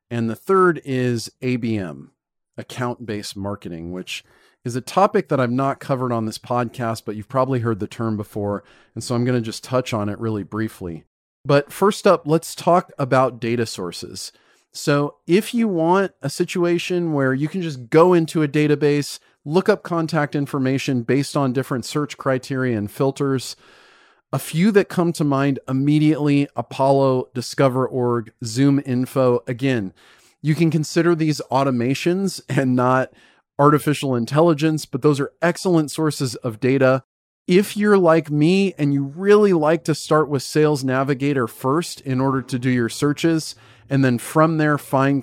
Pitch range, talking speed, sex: 125-155 Hz, 165 wpm, male